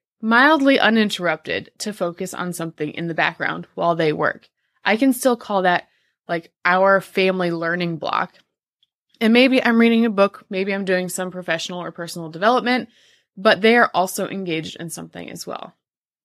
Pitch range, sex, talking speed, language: 180-230 Hz, female, 165 wpm, English